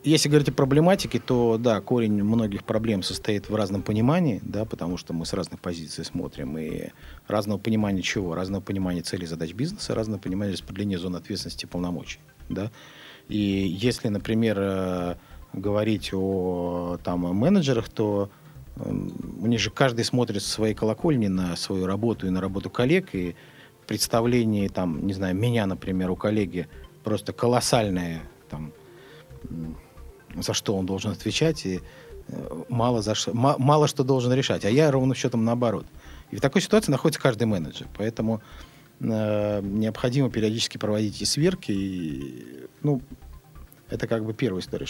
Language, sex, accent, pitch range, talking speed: Russian, male, native, 95-130 Hz, 150 wpm